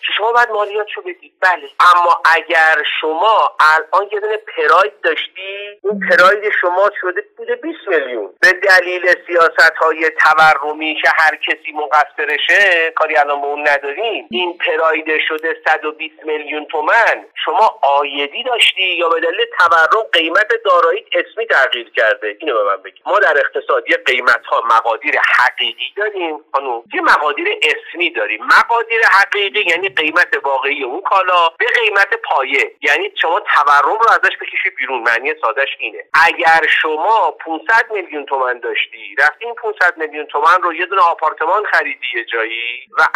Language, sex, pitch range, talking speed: Persian, male, 150-240 Hz, 150 wpm